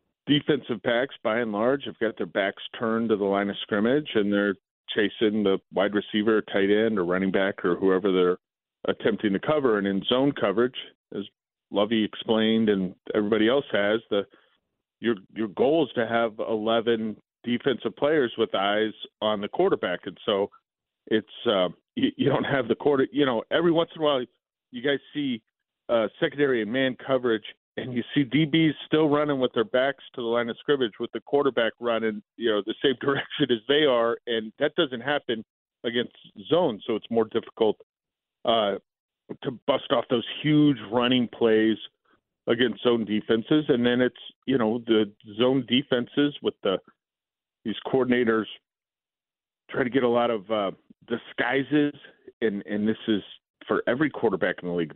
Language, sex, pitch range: English, male, 110-135 Hz